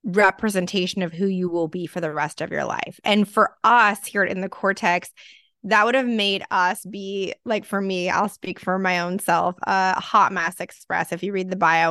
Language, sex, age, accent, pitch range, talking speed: English, female, 20-39, American, 180-210 Hz, 215 wpm